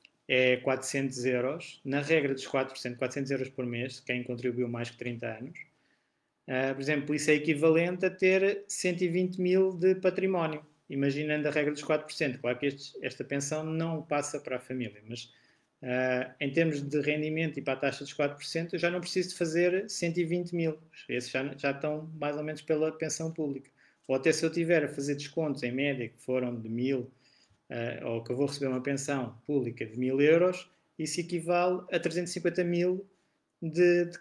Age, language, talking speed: 20-39, Portuguese, 190 wpm